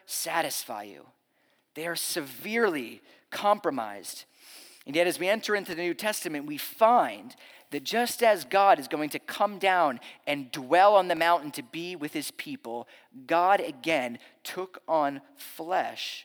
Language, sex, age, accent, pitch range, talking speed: English, male, 30-49, American, 140-230 Hz, 150 wpm